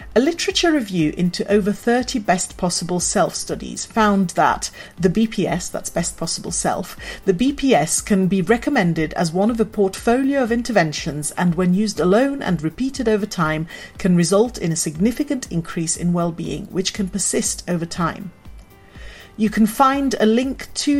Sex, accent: female, British